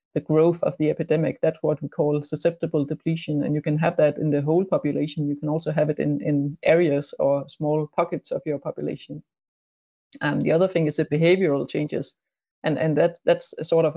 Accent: Danish